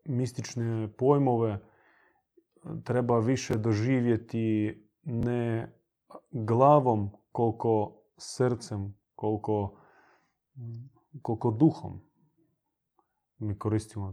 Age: 30-49